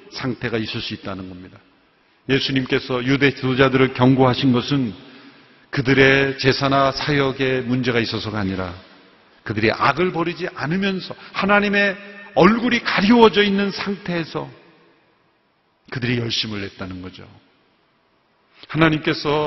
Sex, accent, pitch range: male, native, 125-180 Hz